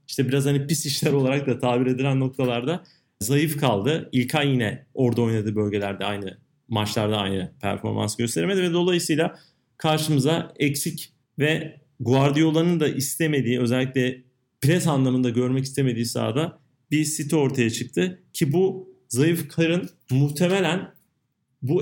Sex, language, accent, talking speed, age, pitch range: male, Turkish, native, 125 wpm, 30-49, 125-150 Hz